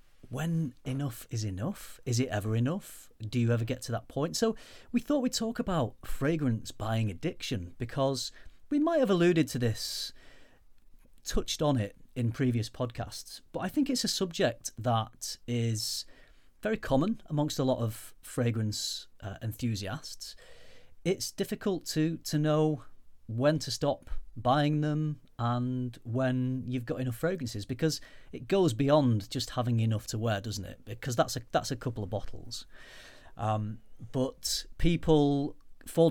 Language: English